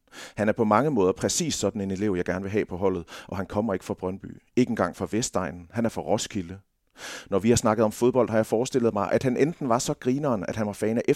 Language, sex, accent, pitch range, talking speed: Danish, male, native, 95-115 Hz, 270 wpm